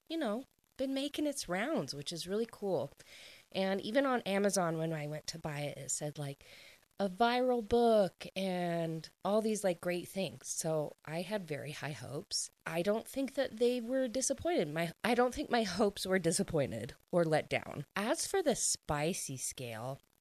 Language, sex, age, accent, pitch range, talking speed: English, female, 30-49, American, 160-235 Hz, 180 wpm